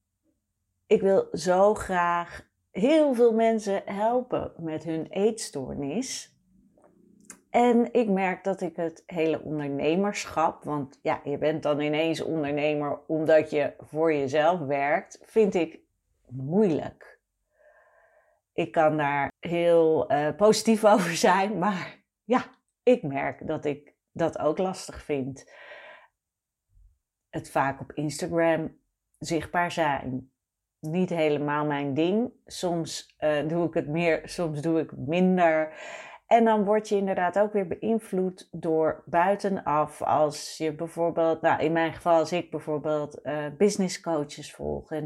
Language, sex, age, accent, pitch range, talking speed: Dutch, female, 40-59, Dutch, 150-205 Hz, 130 wpm